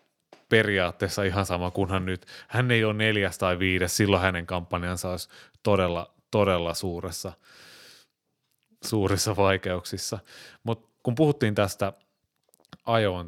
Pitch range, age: 90-110 Hz, 30-49